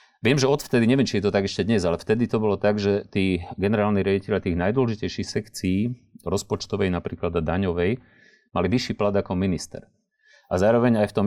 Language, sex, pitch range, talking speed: Slovak, male, 90-115 Hz, 185 wpm